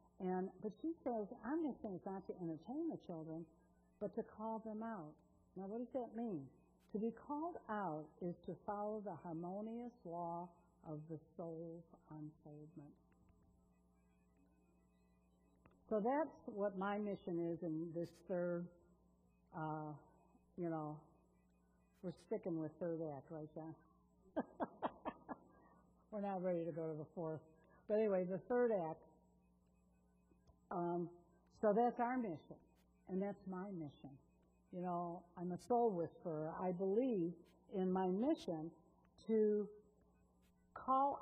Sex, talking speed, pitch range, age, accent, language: female, 135 wpm, 155-220 Hz, 60-79, American, English